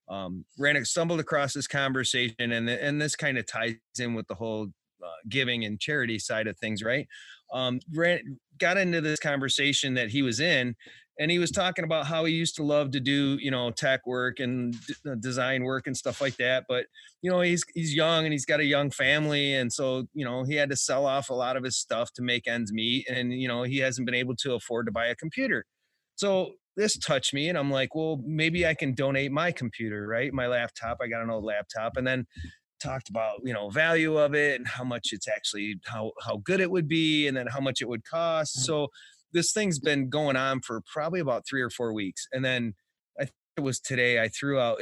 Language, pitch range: English, 120-150 Hz